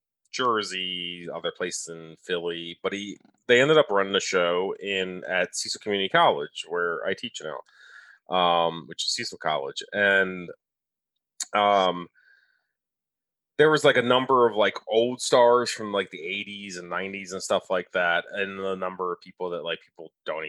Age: 30-49